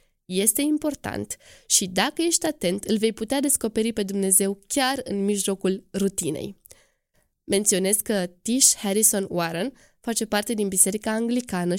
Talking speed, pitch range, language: 130 wpm, 195-255 Hz, Romanian